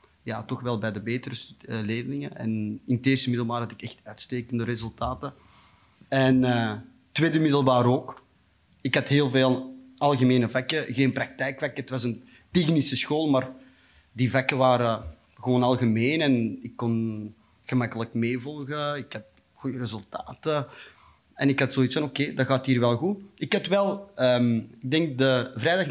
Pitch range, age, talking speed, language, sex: 125-155 Hz, 30-49, 155 wpm, Dutch, male